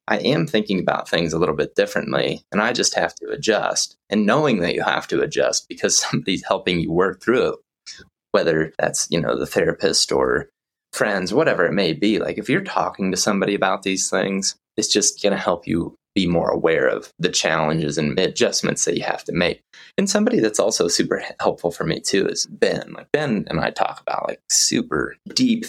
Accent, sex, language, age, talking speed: American, male, English, 20-39, 205 wpm